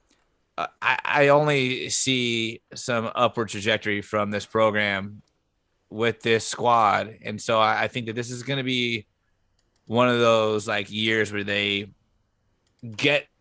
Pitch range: 105-125 Hz